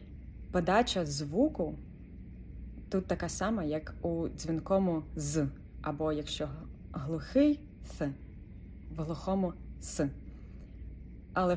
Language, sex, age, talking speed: Ukrainian, female, 20-39, 100 wpm